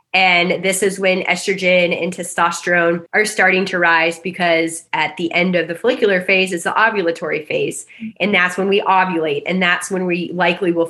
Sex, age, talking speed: female, 20-39, 185 wpm